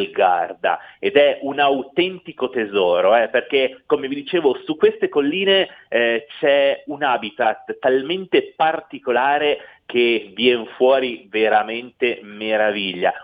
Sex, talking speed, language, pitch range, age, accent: male, 115 wpm, Italian, 110-185 Hz, 30-49, native